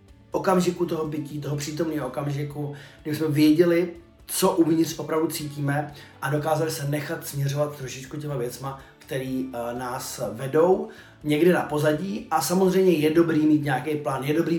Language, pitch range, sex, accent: Czech, 130-165 Hz, male, native